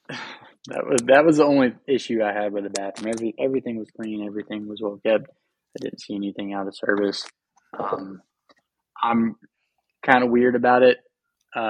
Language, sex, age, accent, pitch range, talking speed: English, male, 20-39, American, 105-115 Hz, 180 wpm